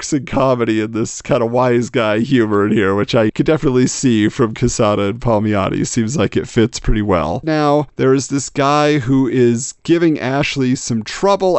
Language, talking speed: English, 190 wpm